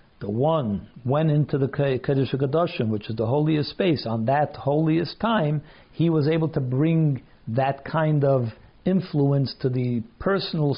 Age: 60-79